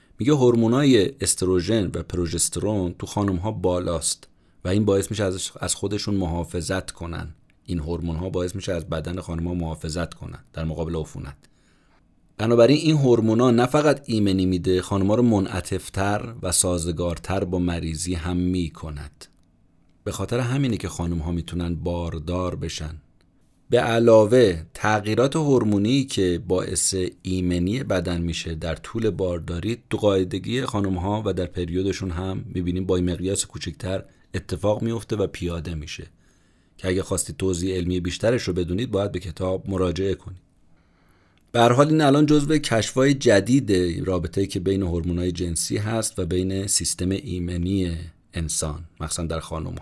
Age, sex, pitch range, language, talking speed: 30-49, male, 85-105 Hz, Persian, 140 wpm